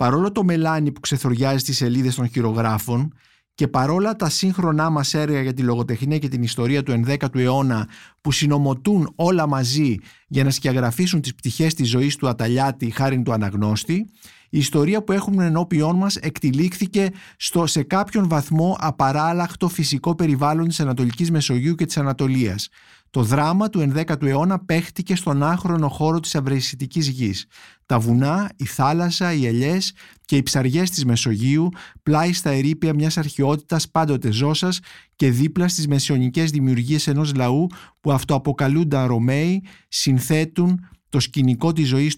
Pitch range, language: 130-165 Hz, Greek